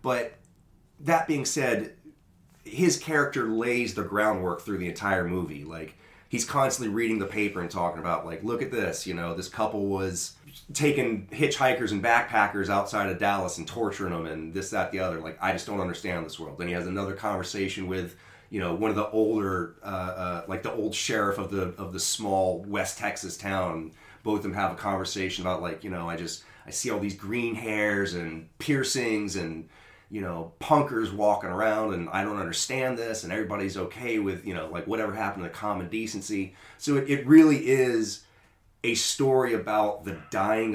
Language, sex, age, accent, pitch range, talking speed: English, male, 30-49, American, 95-110 Hz, 195 wpm